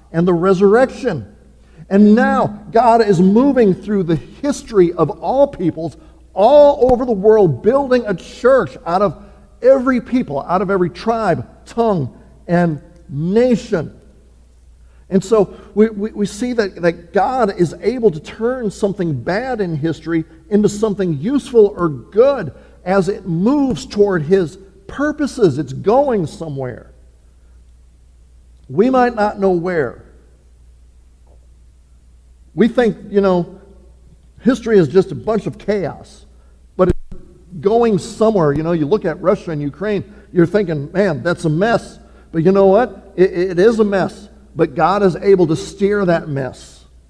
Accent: American